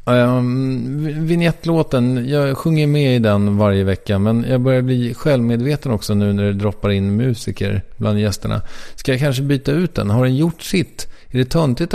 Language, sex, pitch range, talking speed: English, male, 105-130 Hz, 185 wpm